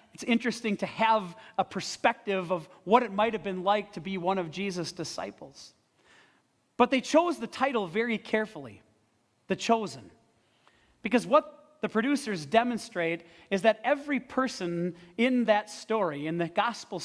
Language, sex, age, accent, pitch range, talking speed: English, male, 40-59, American, 170-235 Hz, 150 wpm